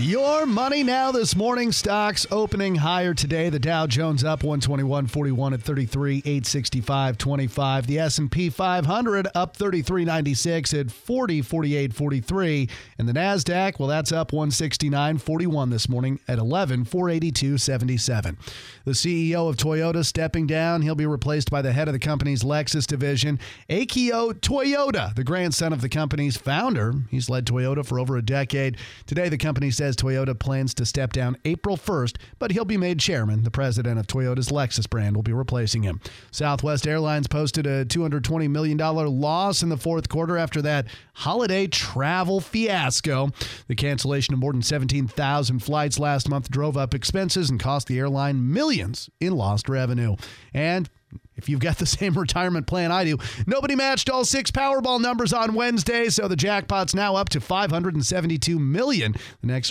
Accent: American